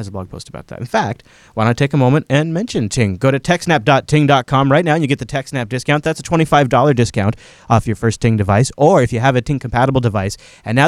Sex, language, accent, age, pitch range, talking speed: male, English, American, 30-49, 115-150 Hz, 250 wpm